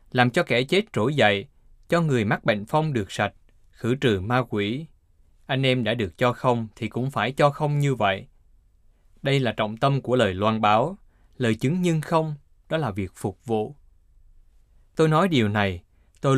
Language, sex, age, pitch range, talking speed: Vietnamese, male, 20-39, 100-150 Hz, 190 wpm